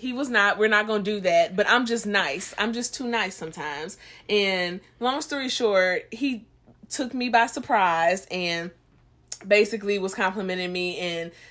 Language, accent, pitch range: English, American, 175-210 Hz